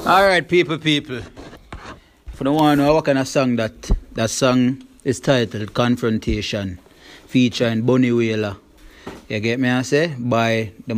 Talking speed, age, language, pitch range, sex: 160 wpm, 30-49, English, 105-135 Hz, male